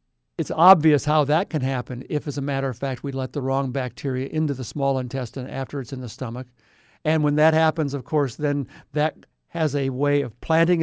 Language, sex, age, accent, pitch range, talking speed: English, male, 60-79, American, 135-165 Hz, 215 wpm